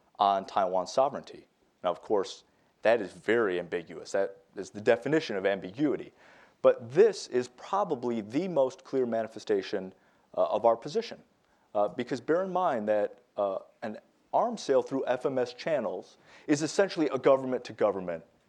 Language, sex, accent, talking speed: English, male, American, 145 wpm